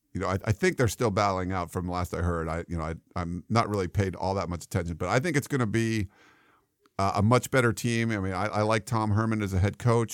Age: 50-69